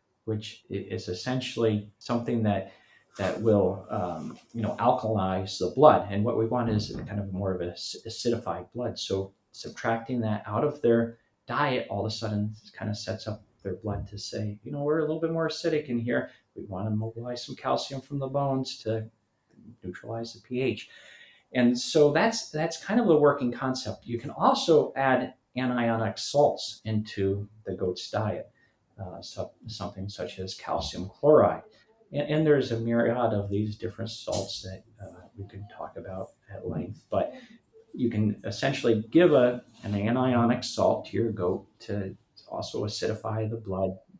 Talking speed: 170 wpm